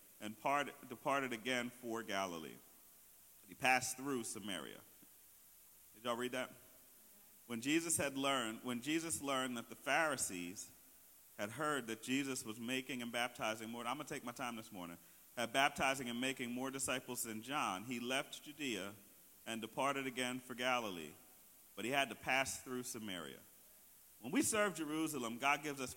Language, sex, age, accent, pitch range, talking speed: English, male, 40-59, American, 120-155 Hz, 160 wpm